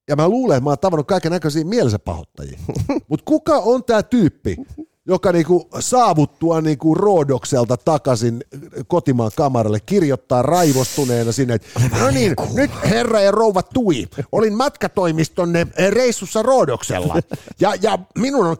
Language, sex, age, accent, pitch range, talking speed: Finnish, male, 50-69, native, 155-235 Hz, 140 wpm